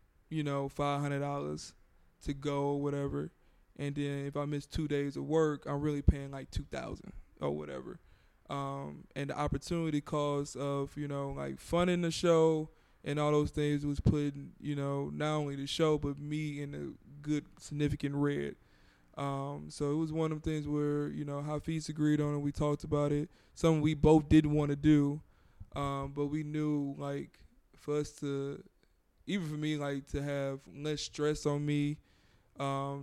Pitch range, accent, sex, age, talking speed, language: 140-155 Hz, American, male, 20-39, 180 wpm, English